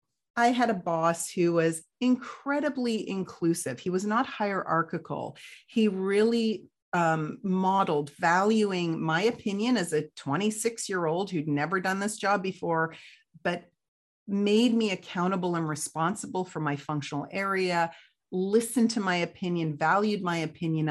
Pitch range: 160-210 Hz